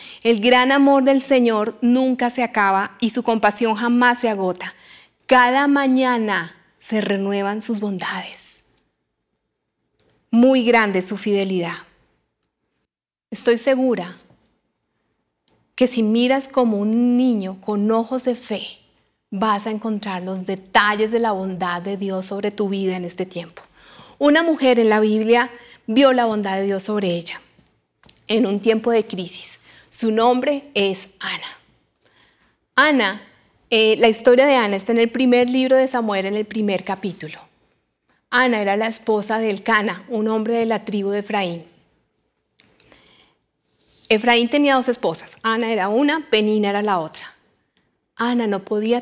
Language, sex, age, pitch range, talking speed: Spanish, female, 30-49, 195-240 Hz, 145 wpm